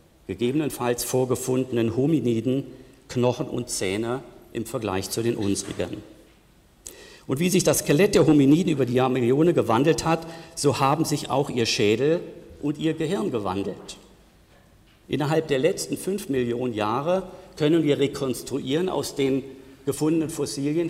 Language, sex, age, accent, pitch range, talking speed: German, male, 50-69, German, 120-155 Hz, 130 wpm